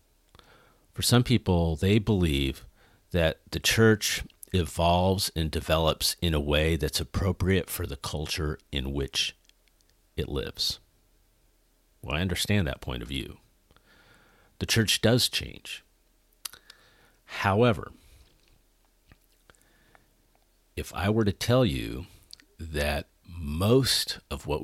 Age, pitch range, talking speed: 50-69, 75-100 Hz, 110 wpm